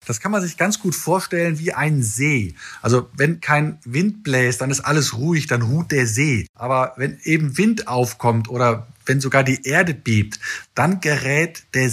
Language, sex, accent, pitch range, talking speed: German, male, German, 130-160 Hz, 185 wpm